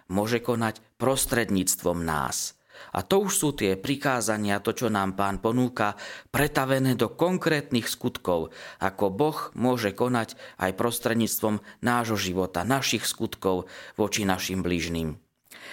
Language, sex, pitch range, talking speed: Slovak, male, 100-120 Hz, 120 wpm